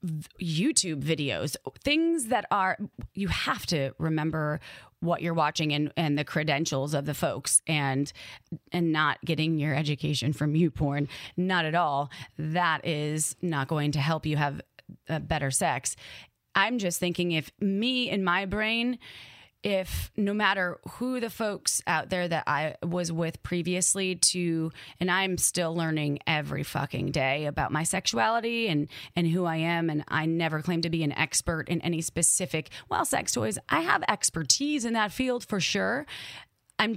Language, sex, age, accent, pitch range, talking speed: English, female, 30-49, American, 155-195 Hz, 165 wpm